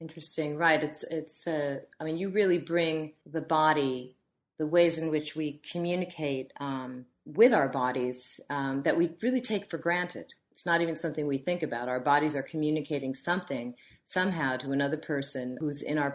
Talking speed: 180 wpm